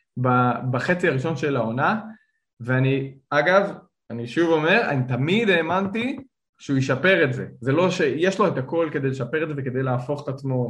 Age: 20-39